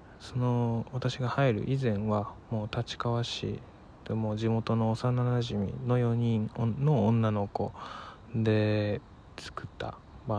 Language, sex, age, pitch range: Japanese, male, 20-39, 105-115 Hz